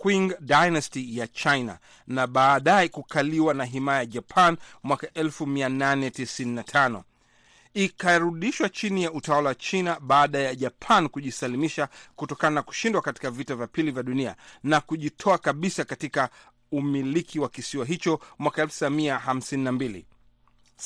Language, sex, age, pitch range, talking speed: Swahili, male, 40-59, 130-165 Hz, 120 wpm